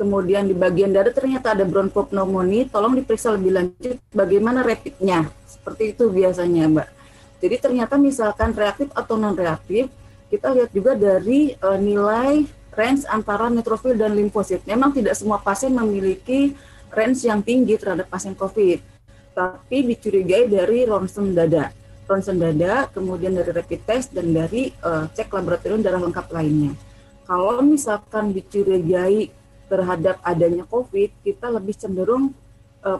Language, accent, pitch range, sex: Indonesian, native, 180-225 Hz, female